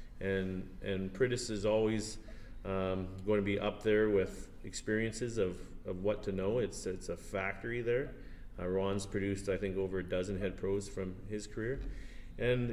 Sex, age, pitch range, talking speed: male, 30-49, 95-110 Hz, 175 wpm